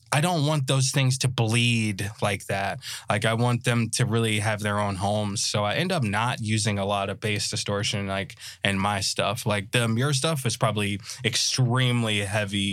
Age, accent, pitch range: 20-39, American, 105-125 Hz